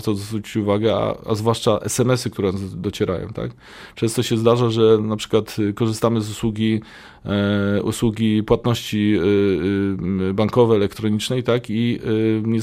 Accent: native